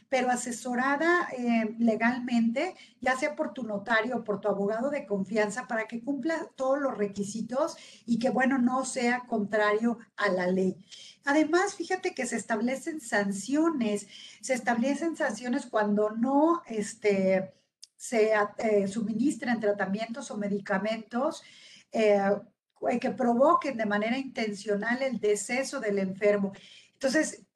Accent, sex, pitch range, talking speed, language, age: Mexican, female, 215-280 Hz, 125 wpm, Spanish, 40-59